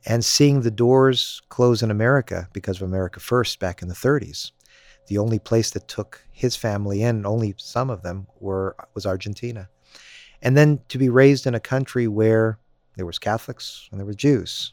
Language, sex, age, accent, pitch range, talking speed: English, male, 50-69, American, 100-125 Hz, 185 wpm